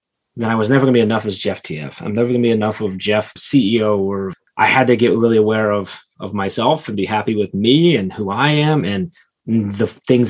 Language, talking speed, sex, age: English, 245 wpm, male, 20-39